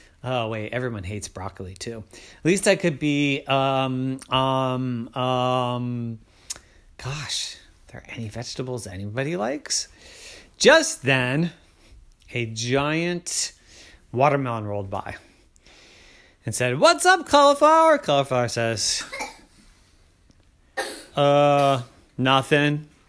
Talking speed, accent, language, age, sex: 95 wpm, American, English, 30-49, male